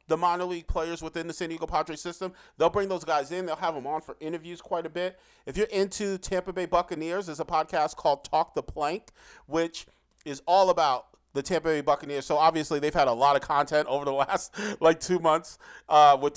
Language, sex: English, male